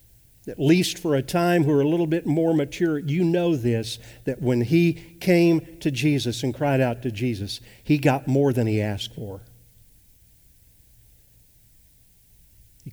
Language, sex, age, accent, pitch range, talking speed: English, male, 50-69, American, 115-150 Hz, 160 wpm